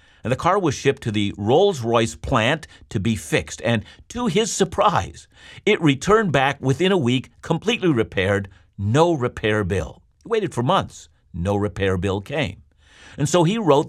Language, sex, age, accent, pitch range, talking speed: English, male, 50-69, American, 105-160 Hz, 170 wpm